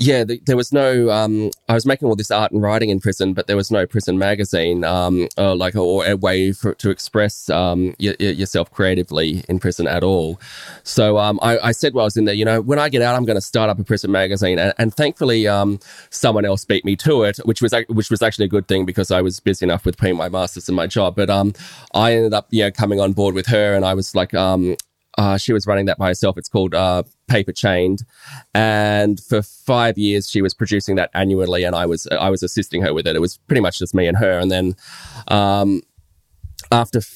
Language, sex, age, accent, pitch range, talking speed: English, male, 20-39, Australian, 95-110 Hz, 250 wpm